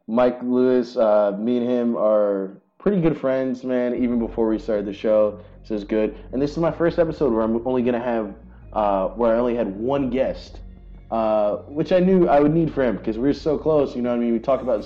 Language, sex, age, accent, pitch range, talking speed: English, male, 20-39, American, 110-145 Hz, 245 wpm